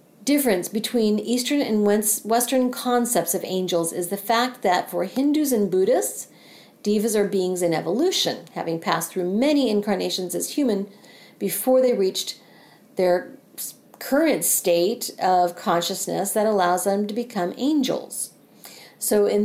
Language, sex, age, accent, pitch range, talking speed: English, female, 50-69, American, 185-245 Hz, 135 wpm